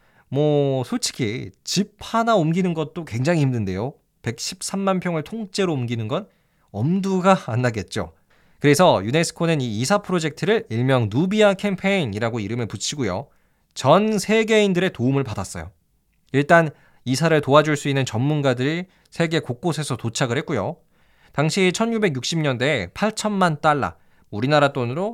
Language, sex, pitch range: Korean, male, 125-185 Hz